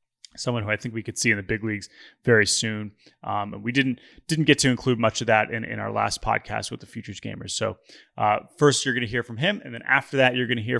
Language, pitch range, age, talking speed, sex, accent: English, 105-125 Hz, 30-49, 280 wpm, male, American